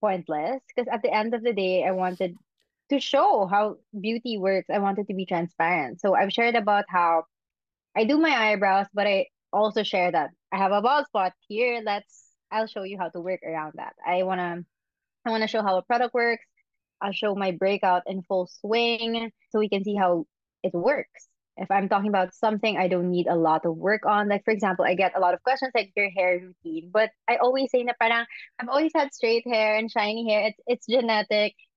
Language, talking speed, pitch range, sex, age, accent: English, 220 wpm, 185-230 Hz, female, 20-39, Filipino